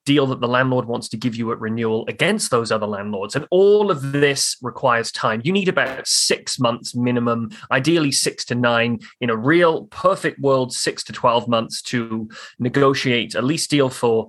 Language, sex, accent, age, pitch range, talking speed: English, male, British, 20-39, 115-135 Hz, 190 wpm